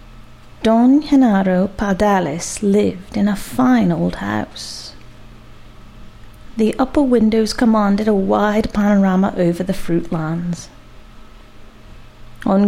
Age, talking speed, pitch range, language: 30-49, 100 wpm, 170-225 Hz, English